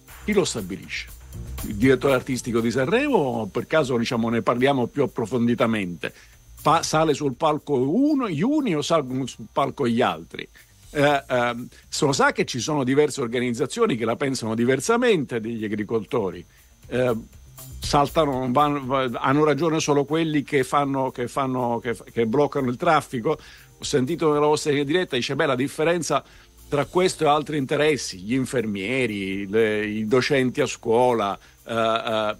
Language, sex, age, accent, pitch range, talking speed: Italian, male, 50-69, native, 120-155 Hz, 155 wpm